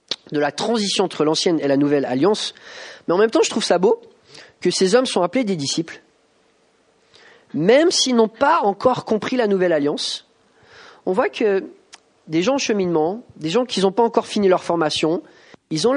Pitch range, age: 155-230 Hz, 30-49